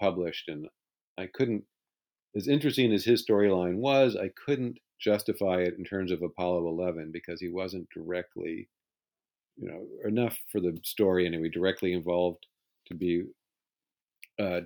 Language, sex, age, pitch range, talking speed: English, male, 50-69, 90-105 Hz, 145 wpm